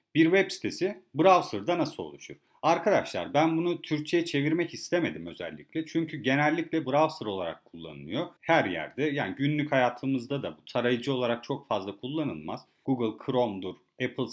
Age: 40-59